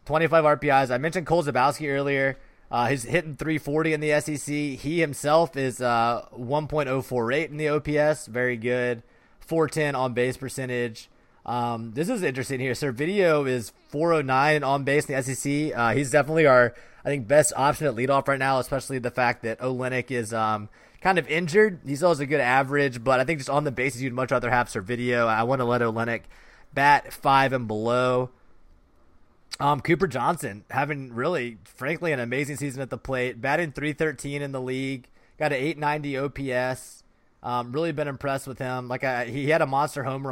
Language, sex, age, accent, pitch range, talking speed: English, male, 20-39, American, 125-150 Hz, 185 wpm